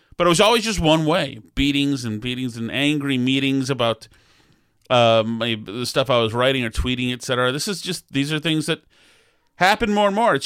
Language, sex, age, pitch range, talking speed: English, male, 30-49, 115-140 Hz, 200 wpm